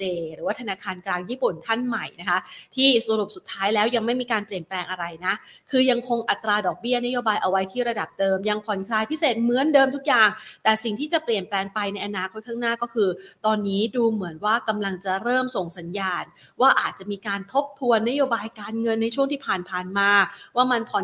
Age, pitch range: 30-49, 195-240 Hz